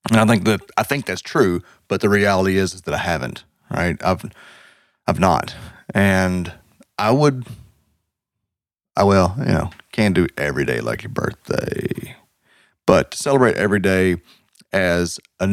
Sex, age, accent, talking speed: male, 30-49, American, 160 wpm